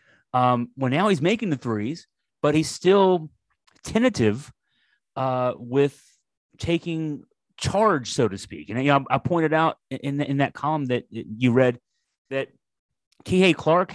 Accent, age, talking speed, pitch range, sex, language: American, 30-49, 150 wpm, 130-160 Hz, male, English